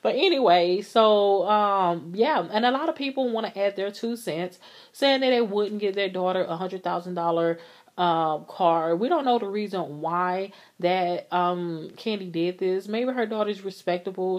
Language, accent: English, American